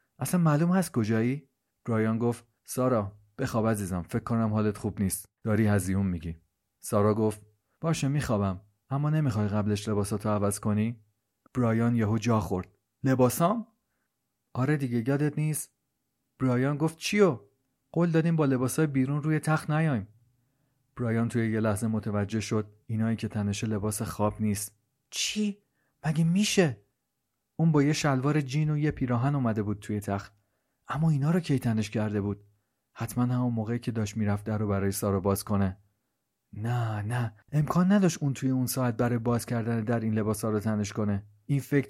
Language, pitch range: Persian, 105-135 Hz